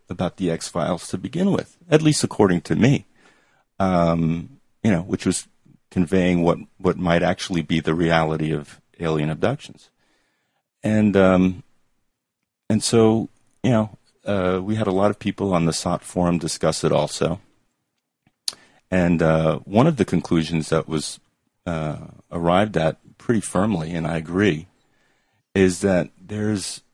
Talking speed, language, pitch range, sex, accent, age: 145 wpm, English, 80-95 Hz, male, American, 40-59